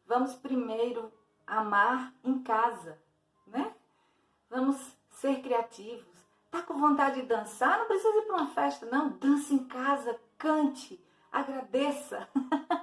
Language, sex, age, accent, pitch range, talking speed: Portuguese, female, 40-59, Brazilian, 210-275 Hz, 120 wpm